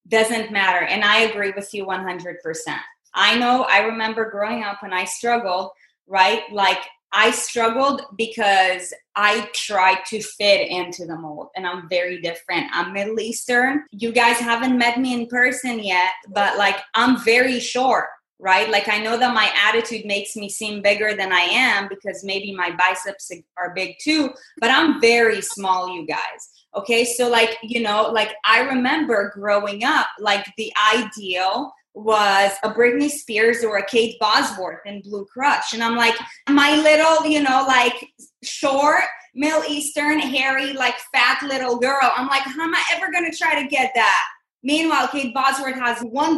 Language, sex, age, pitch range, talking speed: English, female, 20-39, 200-265 Hz, 170 wpm